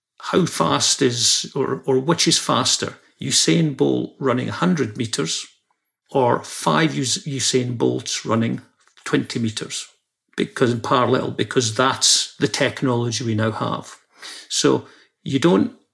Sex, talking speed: male, 125 wpm